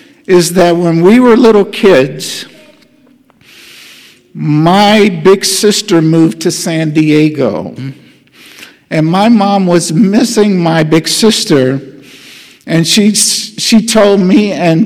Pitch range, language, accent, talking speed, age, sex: 165-220 Hz, English, American, 115 wpm, 50-69, male